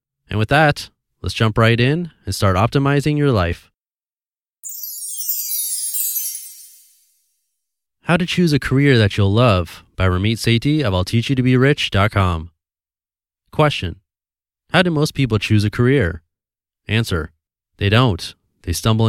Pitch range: 95-120 Hz